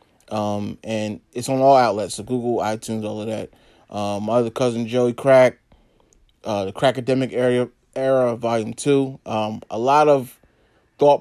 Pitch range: 110-130 Hz